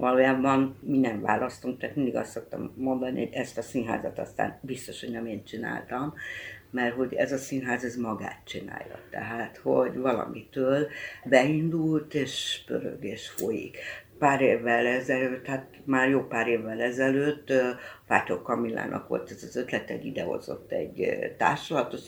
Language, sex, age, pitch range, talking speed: Hungarian, female, 60-79, 125-150 Hz, 150 wpm